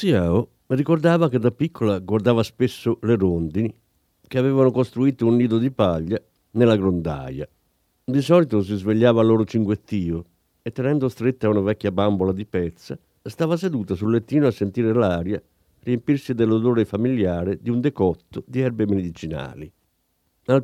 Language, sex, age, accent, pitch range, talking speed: Italian, male, 50-69, native, 95-130 Hz, 150 wpm